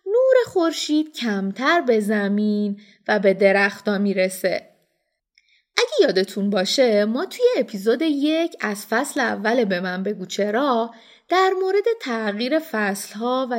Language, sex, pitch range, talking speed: Persian, female, 205-315 Hz, 130 wpm